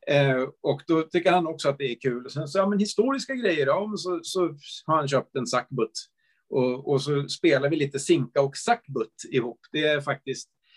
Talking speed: 205 wpm